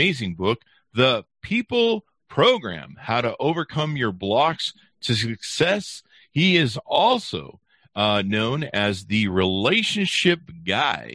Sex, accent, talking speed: male, American, 115 wpm